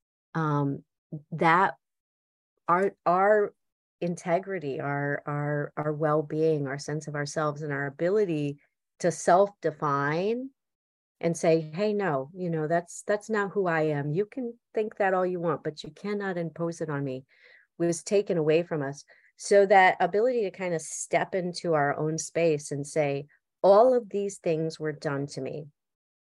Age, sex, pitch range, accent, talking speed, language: 40-59, female, 145-175 Hz, American, 160 wpm, English